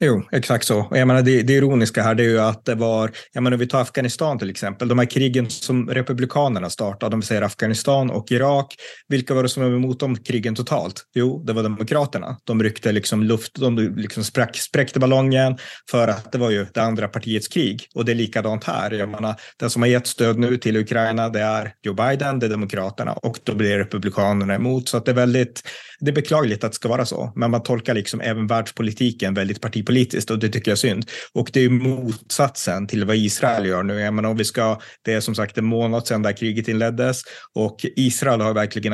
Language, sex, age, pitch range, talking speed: Swedish, male, 30-49, 110-125 Hz, 225 wpm